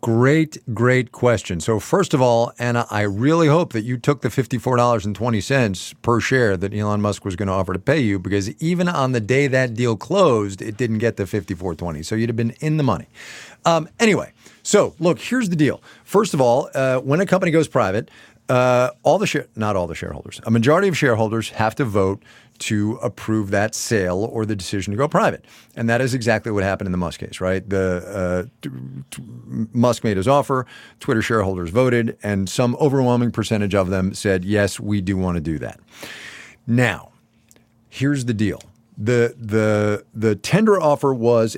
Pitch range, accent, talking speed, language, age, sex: 100-135 Hz, American, 200 wpm, English, 40-59, male